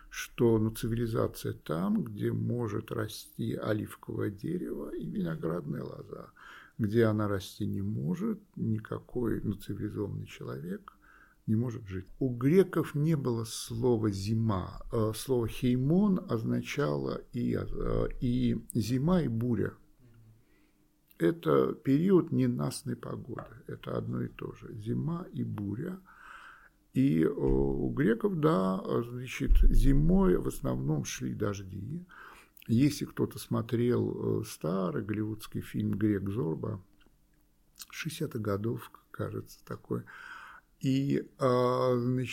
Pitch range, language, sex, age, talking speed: 105-135 Hz, Russian, male, 50-69, 105 wpm